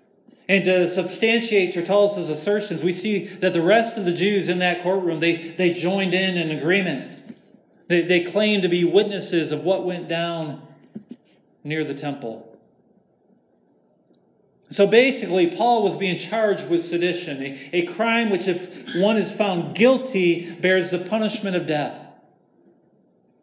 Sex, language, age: male, English, 40-59